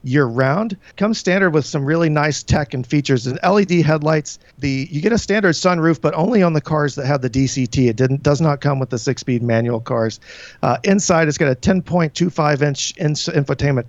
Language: English